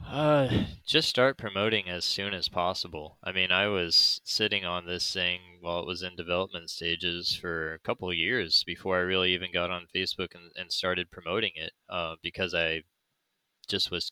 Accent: American